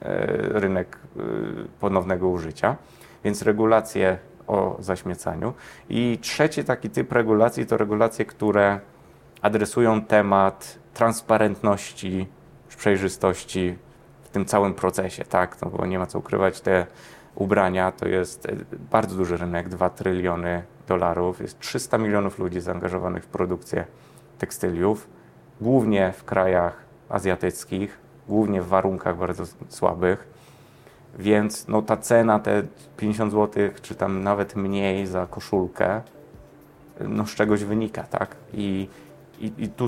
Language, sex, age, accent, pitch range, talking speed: Polish, male, 30-49, native, 95-110 Hz, 120 wpm